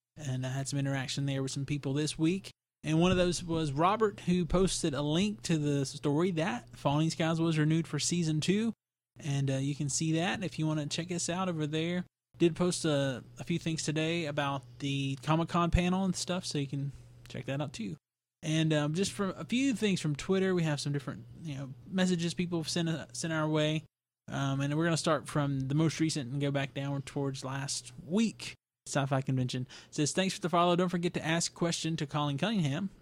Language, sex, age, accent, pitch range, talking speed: English, male, 20-39, American, 140-175 Hz, 225 wpm